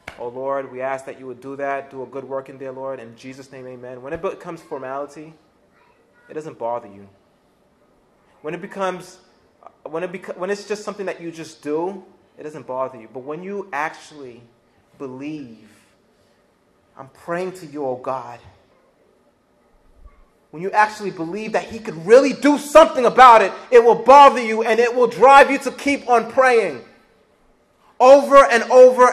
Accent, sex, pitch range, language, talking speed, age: American, male, 145-235 Hz, English, 170 wpm, 30-49